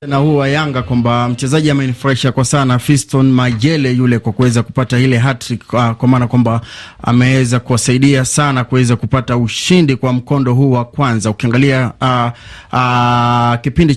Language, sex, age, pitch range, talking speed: Swahili, male, 30-49, 120-140 Hz, 150 wpm